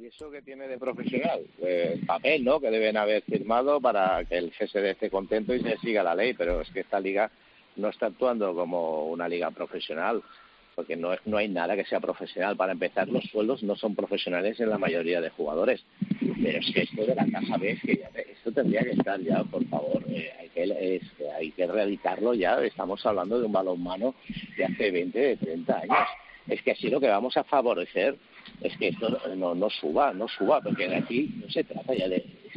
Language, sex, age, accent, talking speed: Spanish, male, 50-69, Spanish, 215 wpm